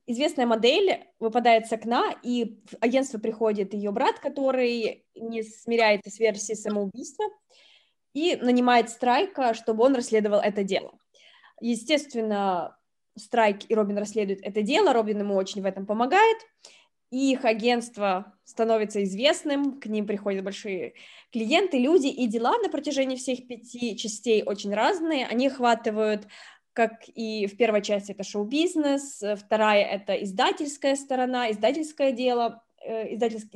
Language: Russian